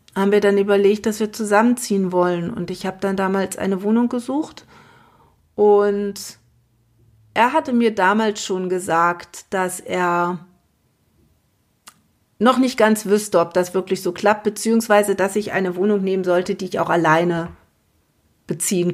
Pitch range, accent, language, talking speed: 185-220 Hz, German, German, 145 wpm